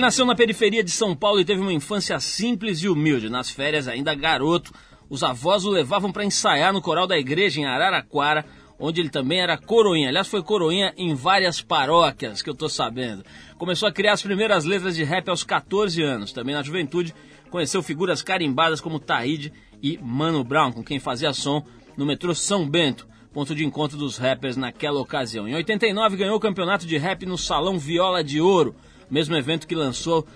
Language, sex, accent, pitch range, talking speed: Portuguese, male, Brazilian, 145-190 Hz, 195 wpm